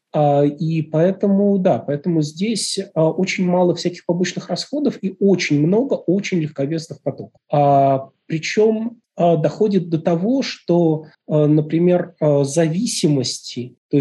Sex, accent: male, native